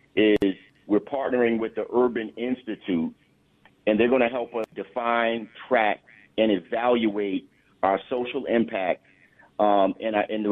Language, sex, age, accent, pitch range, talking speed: English, male, 50-69, American, 100-115 Hz, 135 wpm